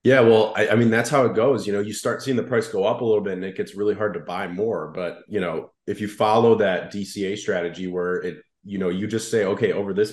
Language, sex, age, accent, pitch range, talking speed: English, male, 30-49, American, 90-110 Hz, 285 wpm